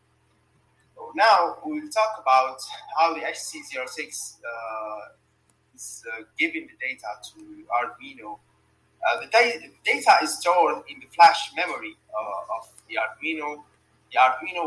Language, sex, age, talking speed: English, male, 30-49, 115 wpm